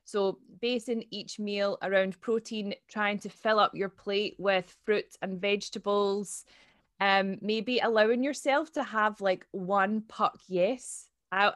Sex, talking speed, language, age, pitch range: female, 140 wpm, English, 20-39, 185-220 Hz